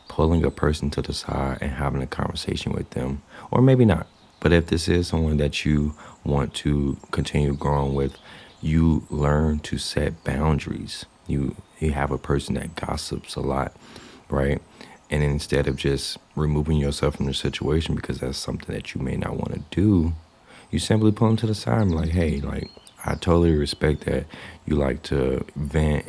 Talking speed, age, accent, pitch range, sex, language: 185 wpm, 30-49, American, 70-80 Hz, male, English